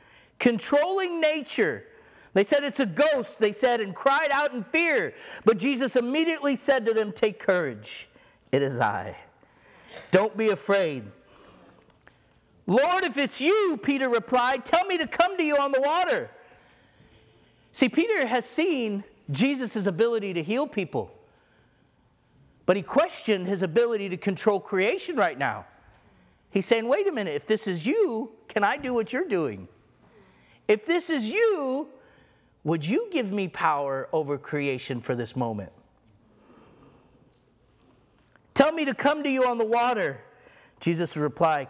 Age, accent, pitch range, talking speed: 50-69, American, 185-275 Hz, 145 wpm